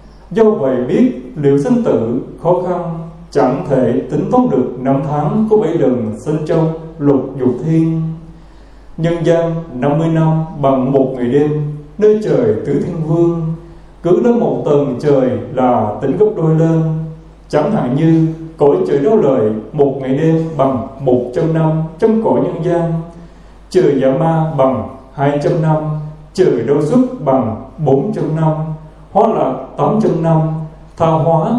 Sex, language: male, Vietnamese